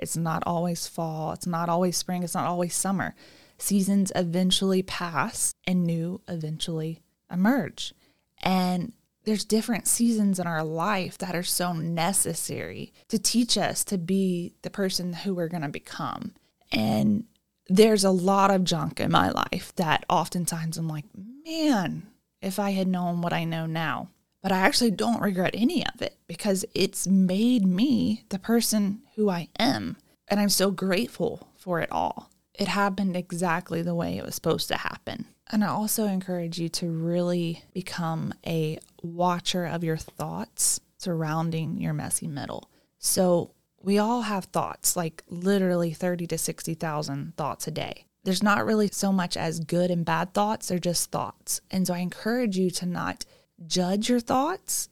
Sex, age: female, 20-39